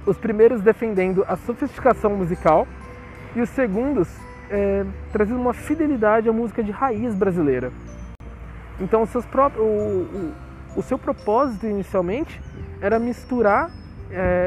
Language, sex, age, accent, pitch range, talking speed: Portuguese, male, 20-39, Brazilian, 180-240 Hz, 125 wpm